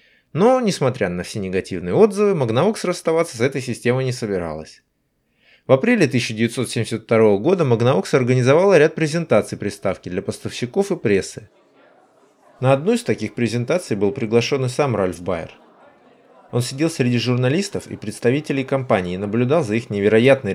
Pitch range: 105-150 Hz